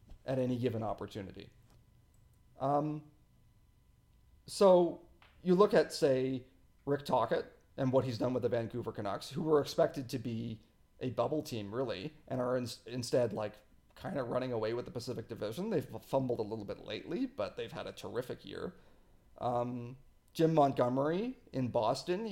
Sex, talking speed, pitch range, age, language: male, 155 wpm, 115-145 Hz, 40-59, English